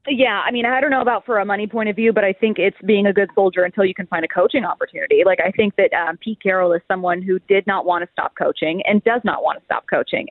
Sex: female